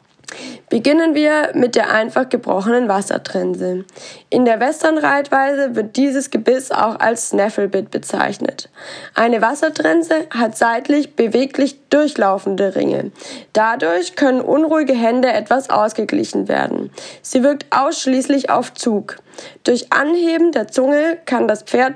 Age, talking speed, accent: 20-39, 120 wpm, German